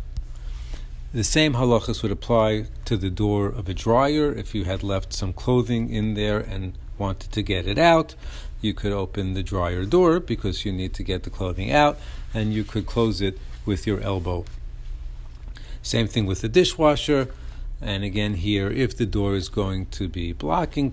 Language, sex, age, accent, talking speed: English, male, 50-69, American, 180 wpm